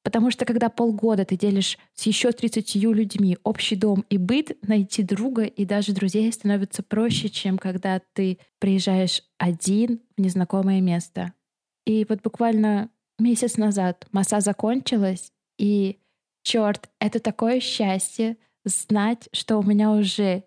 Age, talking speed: 20-39, 135 wpm